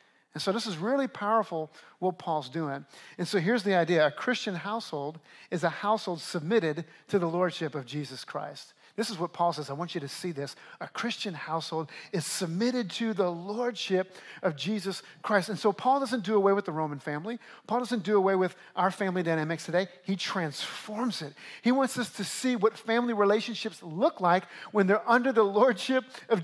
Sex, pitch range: male, 175-225 Hz